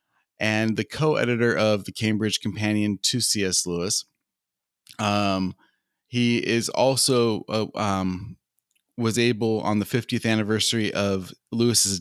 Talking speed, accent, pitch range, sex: 120 wpm, American, 100-115 Hz, male